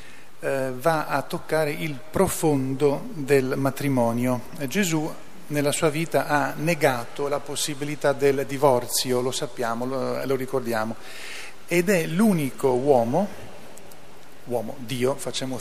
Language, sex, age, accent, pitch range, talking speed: Italian, male, 40-59, native, 135-170 Hz, 110 wpm